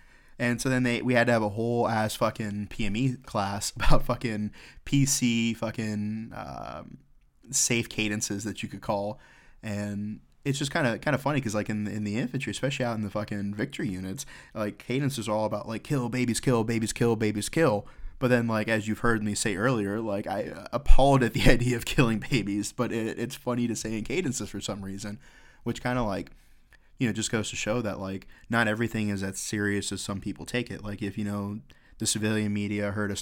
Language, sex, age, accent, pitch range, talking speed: English, male, 20-39, American, 105-120 Hz, 215 wpm